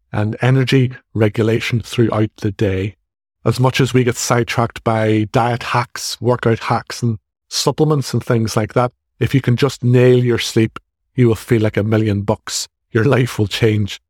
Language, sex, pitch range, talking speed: English, male, 105-130 Hz, 175 wpm